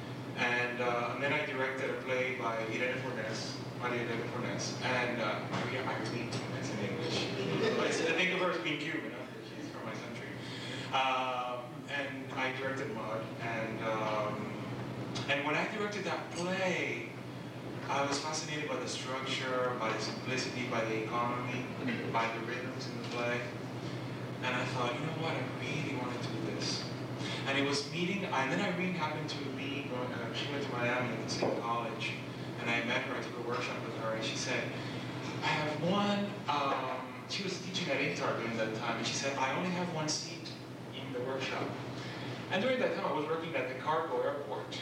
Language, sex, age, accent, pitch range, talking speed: English, male, 30-49, American, 120-150 Hz, 190 wpm